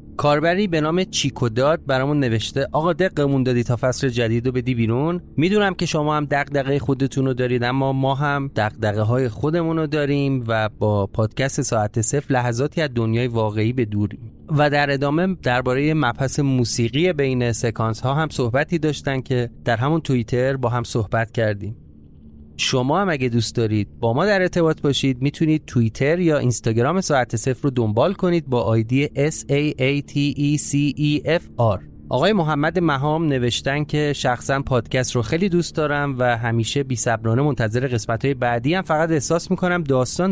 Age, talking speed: 30-49, 170 wpm